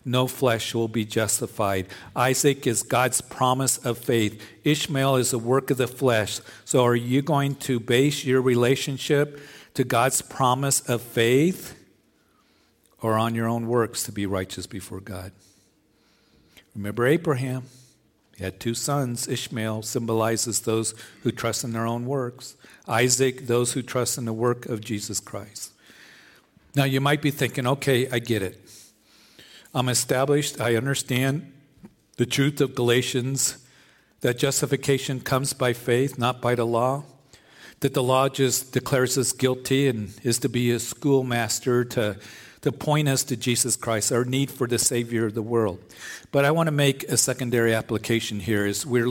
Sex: male